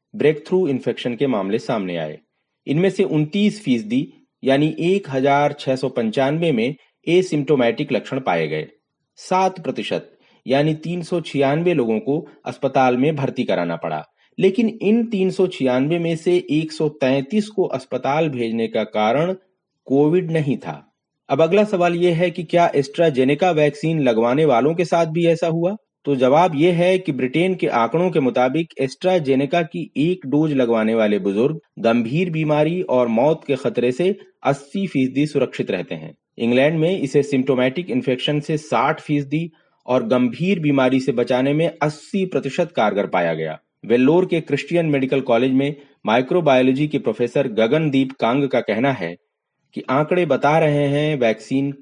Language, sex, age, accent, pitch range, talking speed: Hindi, male, 40-59, native, 130-175 Hz, 145 wpm